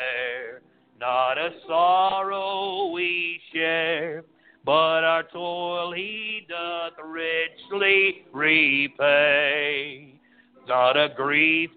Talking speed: 75 wpm